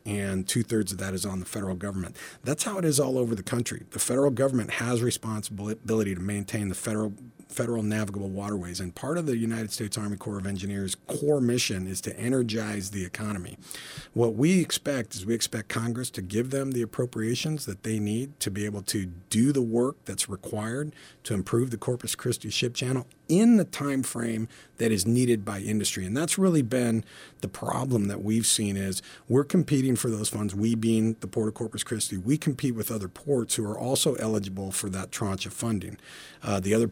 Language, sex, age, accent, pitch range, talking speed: English, male, 40-59, American, 100-125 Hz, 205 wpm